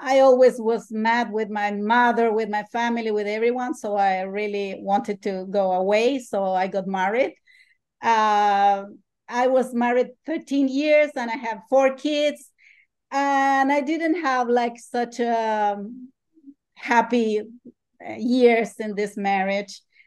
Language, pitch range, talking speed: English, 220-265 Hz, 140 wpm